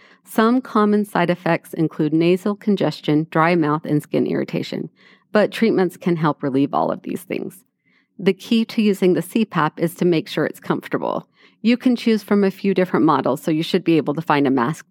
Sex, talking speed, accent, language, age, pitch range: female, 200 wpm, American, English, 40-59, 155-195 Hz